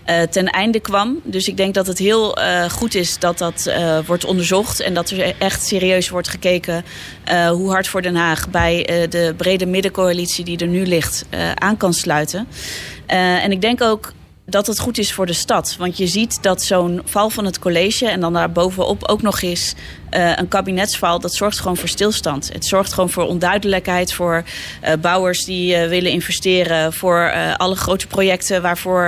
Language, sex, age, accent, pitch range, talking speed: Dutch, female, 30-49, Dutch, 170-190 Hz, 200 wpm